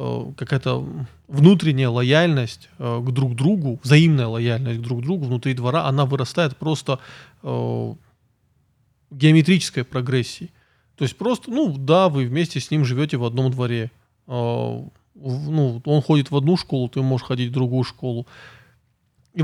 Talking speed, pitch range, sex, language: 140 wpm, 125-160 Hz, male, Russian